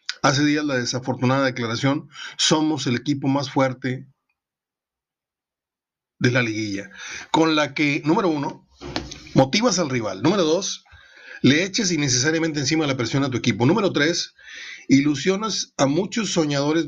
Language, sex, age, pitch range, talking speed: Spanish, male, 40-59, 125-160 Hz, 140 wpm